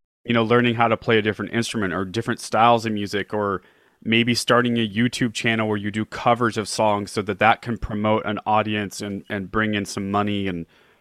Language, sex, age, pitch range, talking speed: English, male, 30-49, 105-130 Hz, 220 wpm